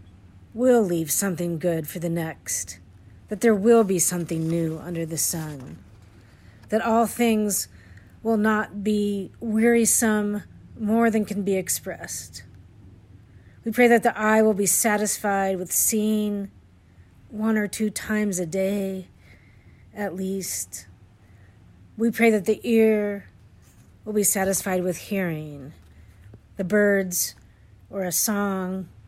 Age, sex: 40-59, female